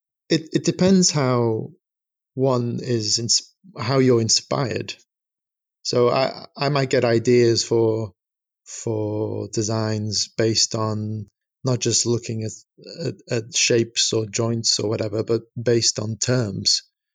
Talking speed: 125 wpm